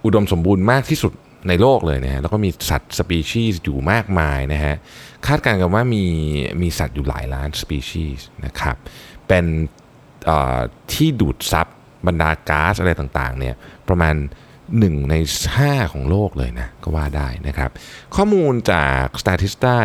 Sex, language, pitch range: male, Thai, 75-110 Hz